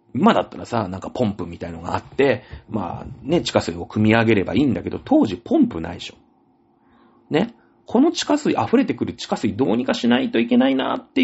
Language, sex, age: Japanese, male, 40-59